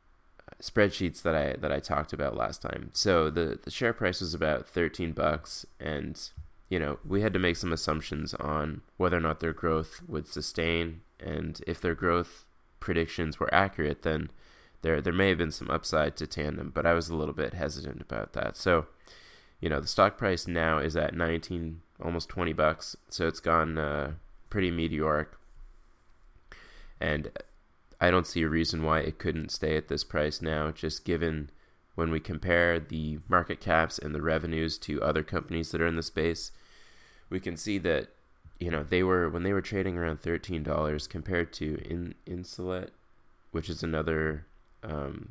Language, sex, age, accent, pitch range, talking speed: English, male, 20-39, American, 75-85 Hz, 180 wpm